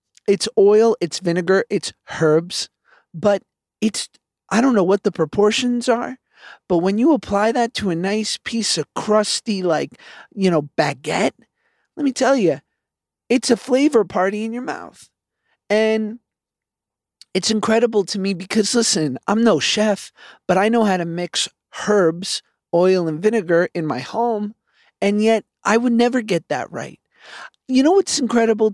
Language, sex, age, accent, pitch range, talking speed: English, male, 40-59, American, 180-230 Hz, 160 wpm